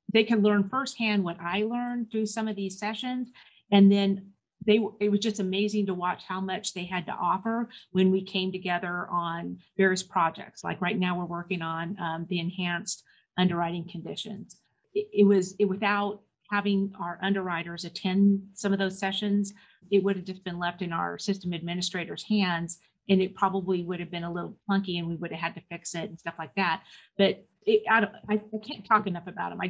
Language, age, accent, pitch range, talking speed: English, 40-59, American, 175-205 Hz, 205 wpm